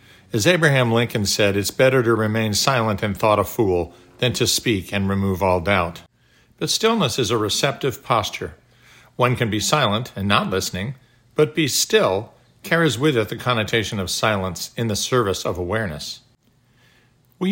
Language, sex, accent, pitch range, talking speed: English, male, American, 100-130 Hz, 170 wpm